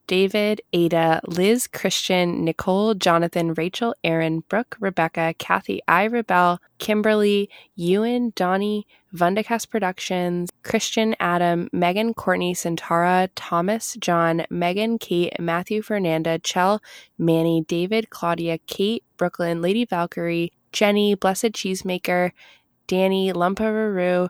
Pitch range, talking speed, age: 175-205 Hz, 105 wpm, 20-39